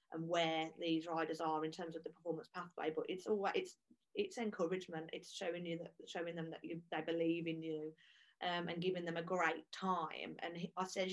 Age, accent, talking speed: 30-49, British, 210 wpm